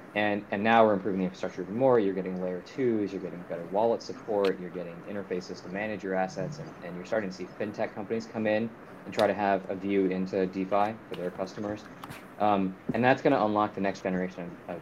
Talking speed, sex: 225 wpm, male